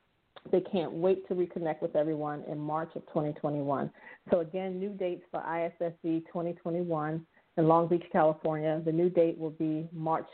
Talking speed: 165 wpm